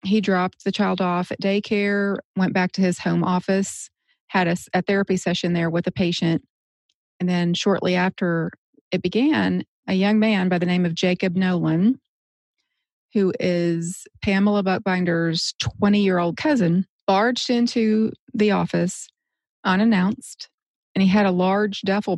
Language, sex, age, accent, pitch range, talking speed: English, female, 30-49, American, 170-200 Hz, 145 wpm